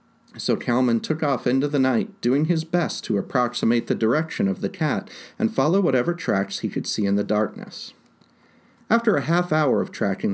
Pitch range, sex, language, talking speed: 115-160 Hz, male, English, 190 wpm